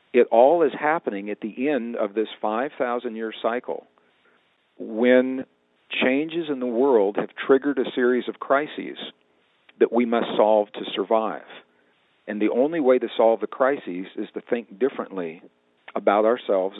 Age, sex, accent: 50-69, male, American